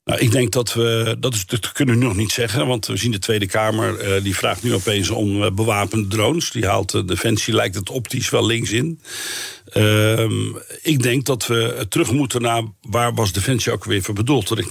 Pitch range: 105-125 Hz